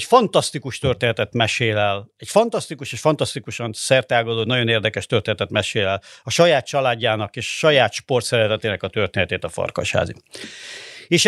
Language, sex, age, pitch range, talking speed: Hungarian, male, 50-69, 115-145 Hz, 130 wpm